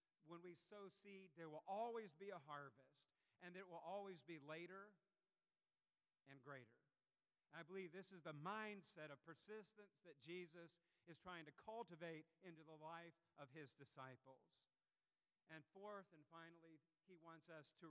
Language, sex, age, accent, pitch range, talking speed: English, male, 50-69, American, 165-195 Hz, 155 wpm